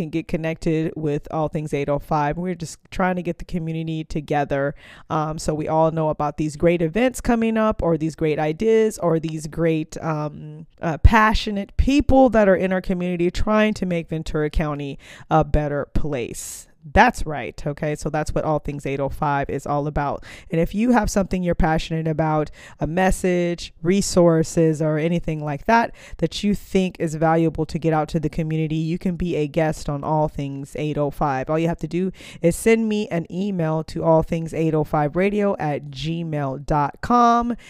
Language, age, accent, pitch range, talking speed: English, 20-39, American, 150-185 Hz, 175 wpm